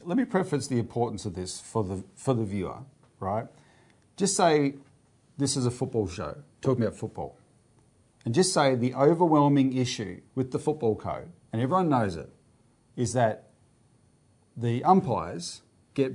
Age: 40-59